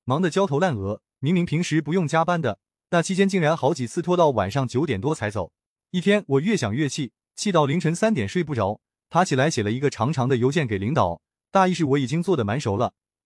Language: Chinese